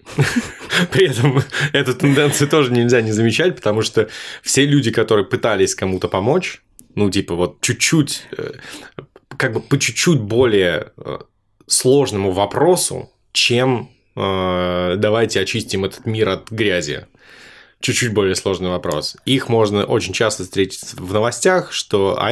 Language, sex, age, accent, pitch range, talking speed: Russian, male, 20-39, native, 95-130 Hz, 130 wpm